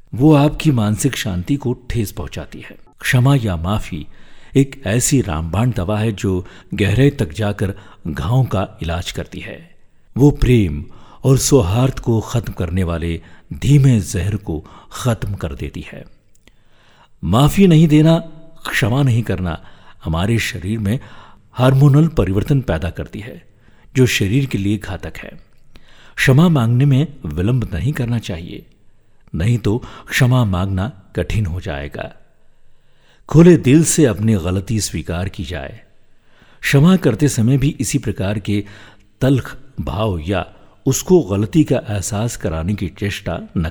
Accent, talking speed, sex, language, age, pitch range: native, 135 wpm, male, Hindi, 60-79, 95-130 Hz